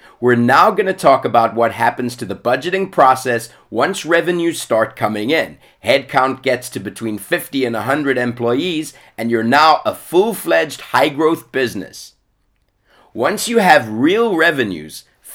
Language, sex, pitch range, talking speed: English, male, 115-165 Hz, 145 wpm